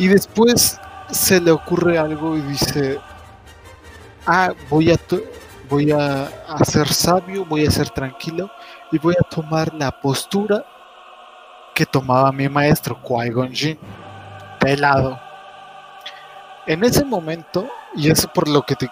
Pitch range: 115-155 Hz